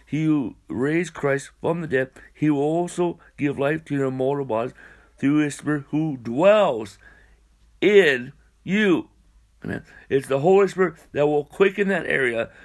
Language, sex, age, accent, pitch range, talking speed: English, male, 60-79, American, 140-185 Hz, 155 wpm